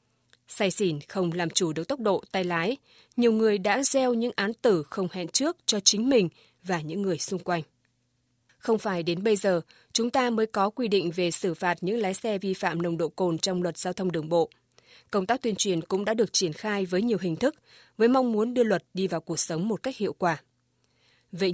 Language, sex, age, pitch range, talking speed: Vietnamese, female, 20-39, 175-225 Hz, 230 wpm